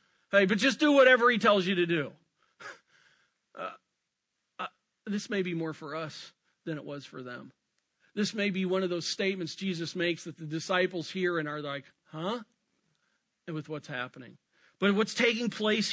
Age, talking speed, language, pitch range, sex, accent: 50-69, 180 wpm, English, 155-200 Hz, male, American